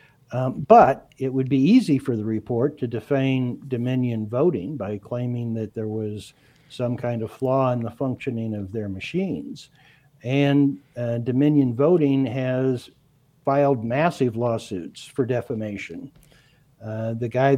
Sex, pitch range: male, 125-150 Hz